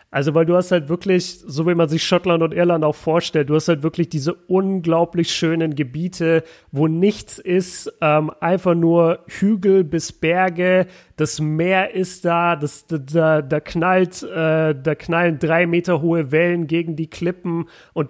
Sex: male